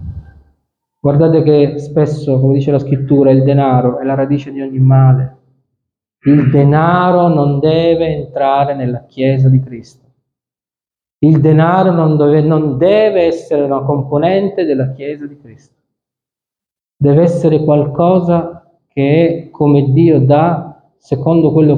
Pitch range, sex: 135-170 Hz, male